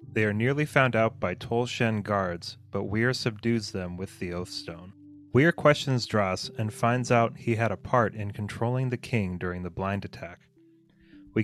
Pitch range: 100-130 Hz